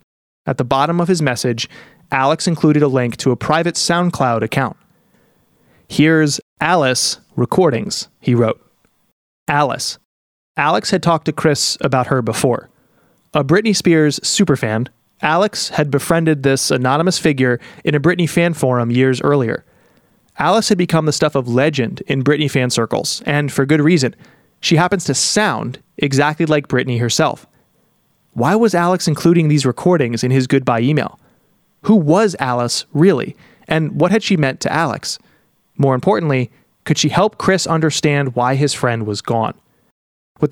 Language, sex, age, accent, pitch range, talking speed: English, male, 30-49, American, 130-170 Hz, 155 wpm